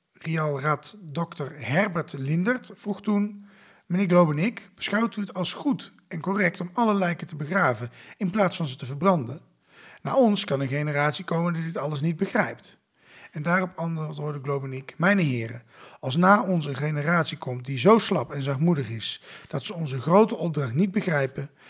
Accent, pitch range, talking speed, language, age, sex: Dutch, 140-185 Hz, 170 wpm, Dutch, 40-59, male